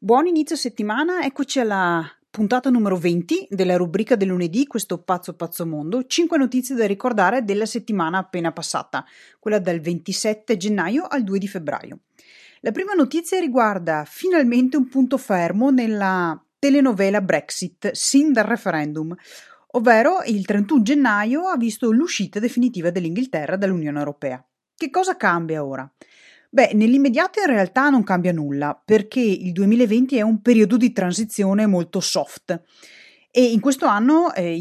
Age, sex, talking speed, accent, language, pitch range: 30-49, female, 145 wpm, native, Italian, 175-250 Hz